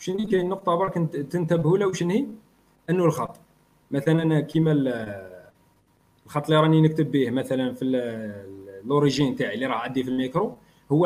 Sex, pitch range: male, 135-185 Hz